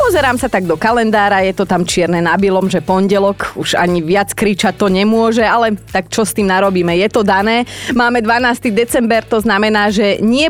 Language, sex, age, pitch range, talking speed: Slovak, female, 30-49, 180-225 Hz, 195 wpm